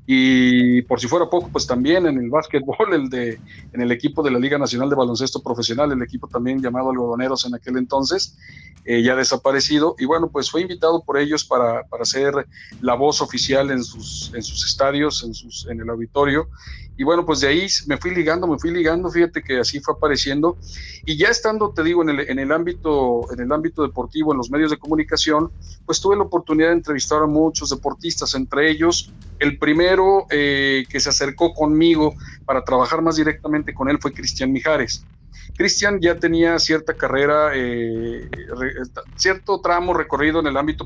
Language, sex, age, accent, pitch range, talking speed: Spanish, male, 50-69, Mexican, 130-160 Hz, 190 wpm